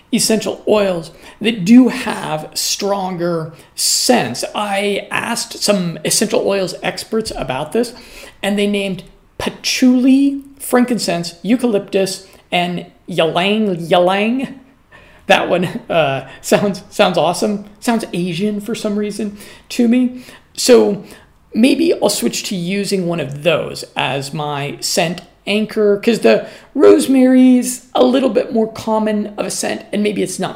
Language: English